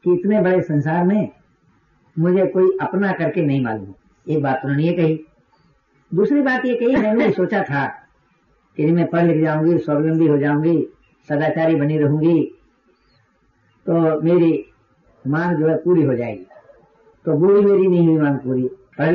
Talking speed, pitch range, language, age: 155 wpm, 145-195 Hz, Hindi, 50-69